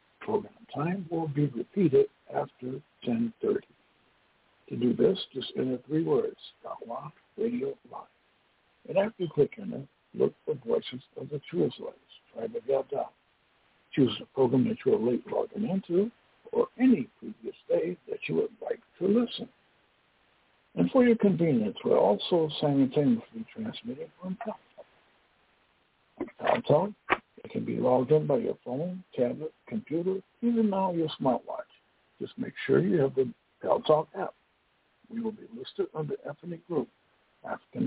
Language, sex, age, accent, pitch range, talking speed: English, male, 60-79, American, 155-235 Hz, 150 wpm